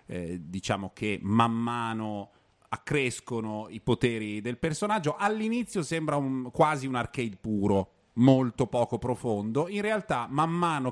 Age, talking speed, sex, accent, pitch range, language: 30-49, 125 wpm, male, native, 105-150 Hz, Italian